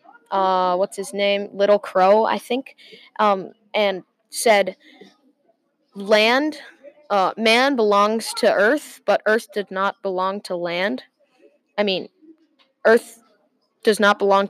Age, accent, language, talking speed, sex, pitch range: 10-29, American, English, 125 wpm, female, 200-240 Hz